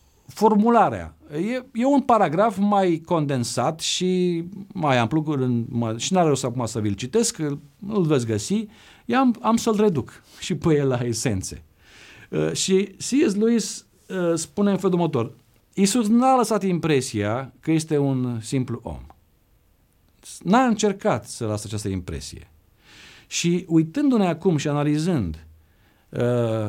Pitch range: 110-175 Hz